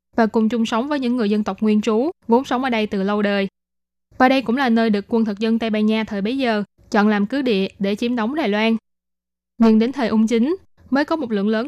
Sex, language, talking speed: female, Vietnamese, 265 wpm